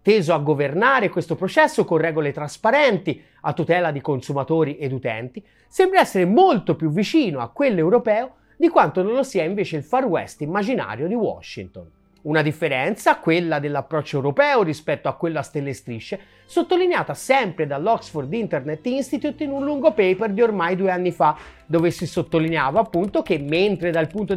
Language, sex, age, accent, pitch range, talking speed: Italian, male, 30-49, native, 160-240 Hz, 165 wpm